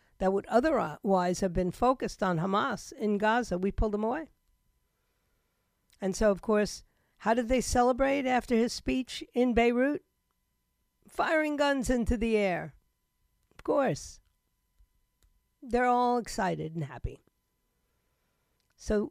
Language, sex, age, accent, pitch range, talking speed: English, female, 50-69, American, 195-250 Hz, 125 wpm